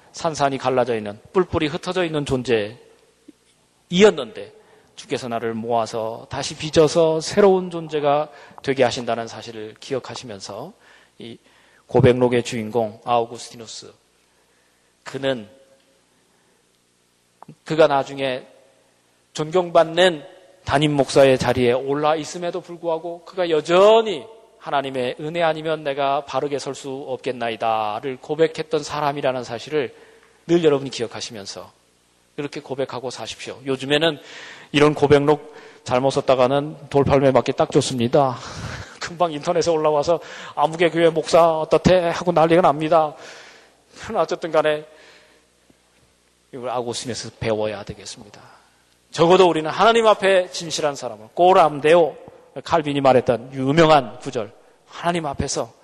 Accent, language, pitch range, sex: native, Korean, 120-165 Hz, male